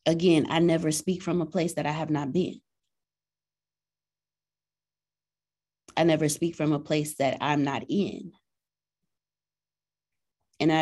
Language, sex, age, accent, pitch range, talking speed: English, female, 20-39, American, 135-160 Hz, 135 wpm